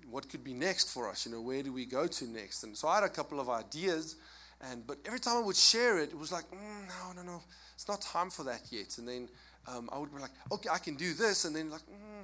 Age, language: 20-39, English